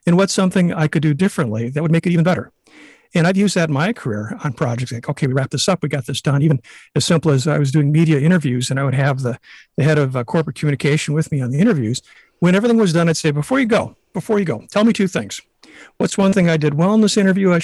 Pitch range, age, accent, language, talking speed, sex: 140-180 Hz, 50-69, American, English, 280 wpm, male